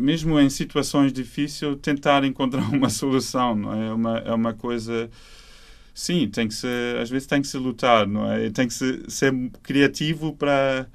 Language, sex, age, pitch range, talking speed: Portuguese, male, 20-39, 115-135 Hz, 185 wpm